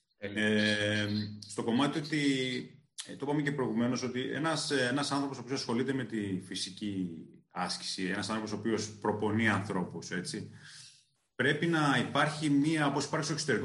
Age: 30-49